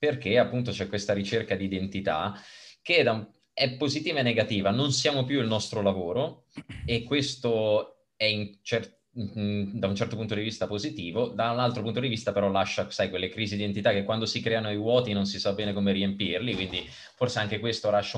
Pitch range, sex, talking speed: 100-130 Hz, male, 210 wpm